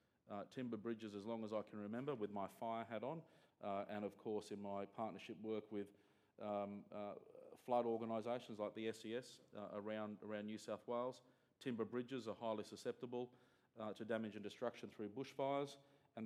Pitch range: 105-115 Hz